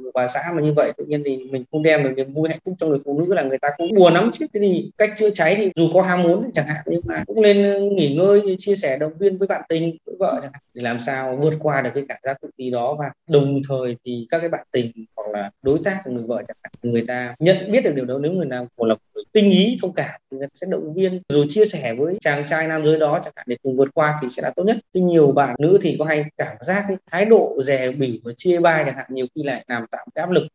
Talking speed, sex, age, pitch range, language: 295 wpm, male, 20-39, 135-175 Hz, Vietnamese